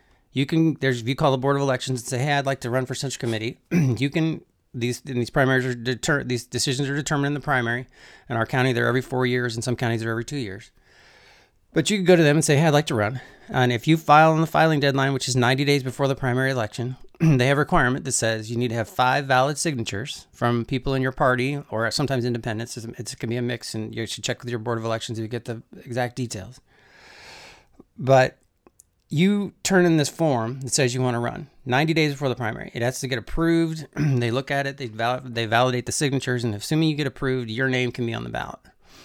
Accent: American